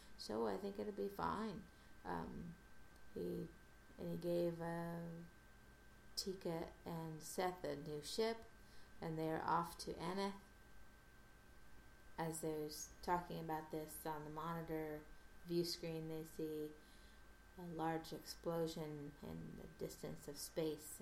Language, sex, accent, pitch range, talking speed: English, female, American, 150-175 Hz, 125 wpm